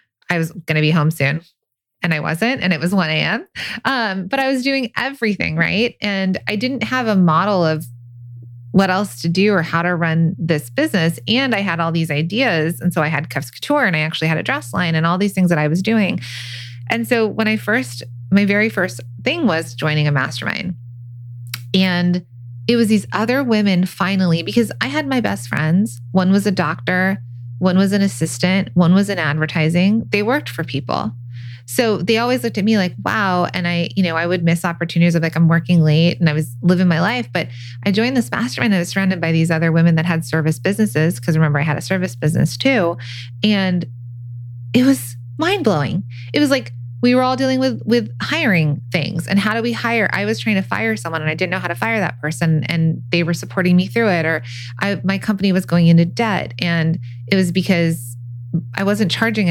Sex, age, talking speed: female, 20-39, 215 wpm